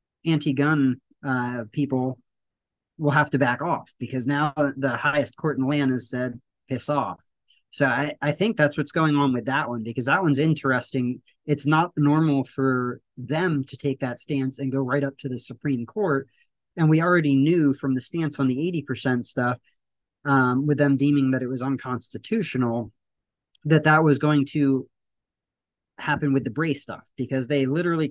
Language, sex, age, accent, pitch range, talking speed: English, male, 30-49, American, 125-145 Hz, 175 wpm